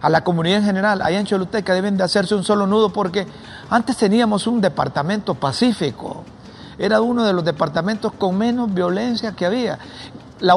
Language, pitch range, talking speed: Spanish, 160-205 Hz, 175 wpm